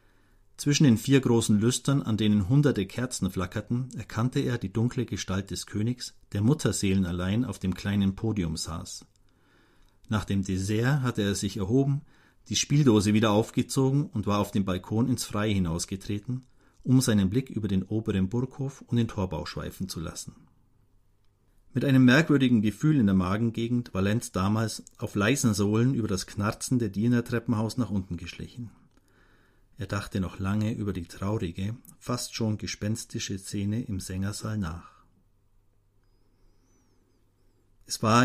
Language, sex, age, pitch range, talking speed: German, male, 50-69, 95-120 Hz, 145 wpm